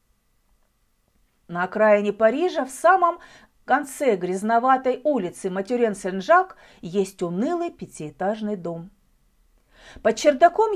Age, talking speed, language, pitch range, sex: 40-59, 85 wpm, Russian, 205-295 Hz, female